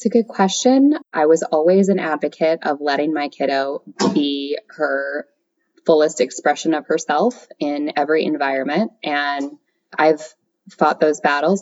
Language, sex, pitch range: English, female, 145-185 Hz